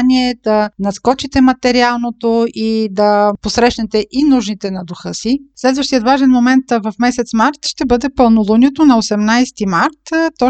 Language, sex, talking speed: Bulgarian, female, 135 wpm